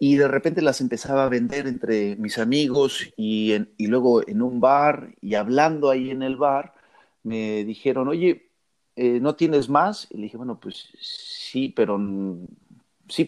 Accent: Mexican